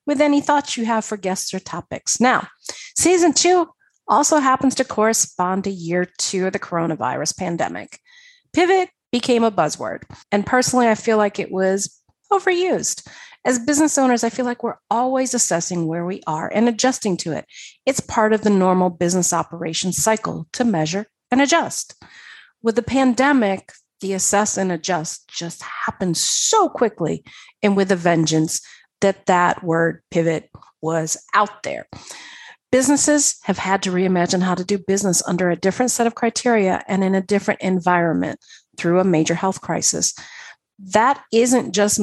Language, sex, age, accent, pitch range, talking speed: English, female, 40-59, American, 180-245 Hz, 160 wpm